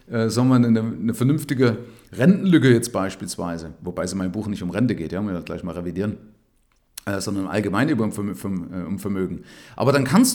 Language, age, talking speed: German, 40-59, 175 wpm